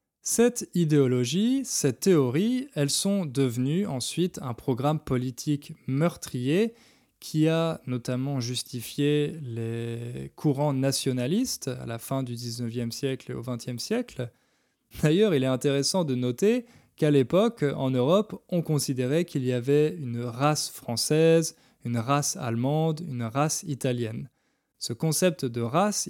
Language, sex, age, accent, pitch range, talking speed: French, male, 20-39, French, 125-160 Hz, 130 wpm